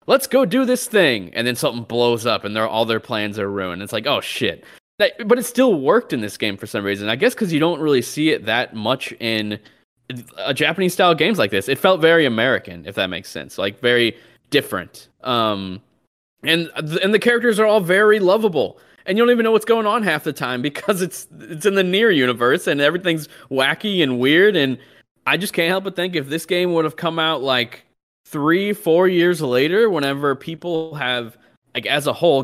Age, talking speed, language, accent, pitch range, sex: 20-39, 215 wpm, English, American, 110-170 Hz, male